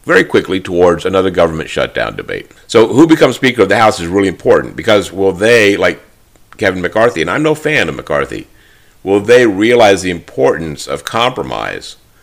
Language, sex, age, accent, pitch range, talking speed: English, male, 50-69, American, 85-110 Hz, 175 wpm